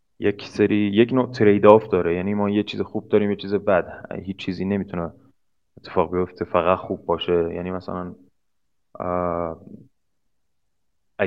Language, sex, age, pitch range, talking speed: Persian, male, 20-39, 90-105 Hz, 145 wpm